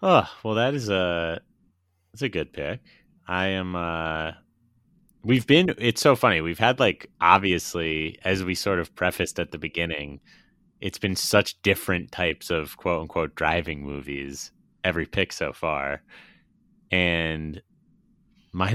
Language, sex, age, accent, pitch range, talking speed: English, male, 30-49, American, 80-90 Hz, 145 wpm